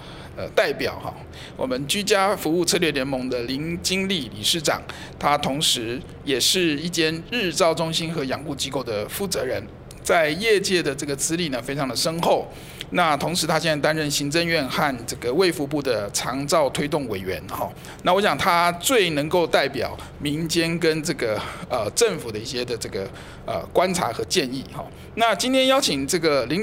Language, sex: Chinese, male